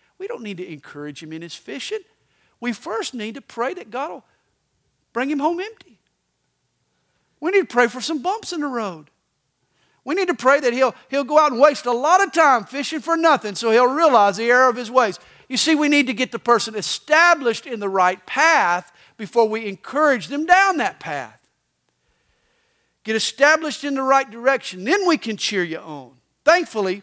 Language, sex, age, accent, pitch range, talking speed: English, male, 50-69, American, 185-275 Hz, 200 wpm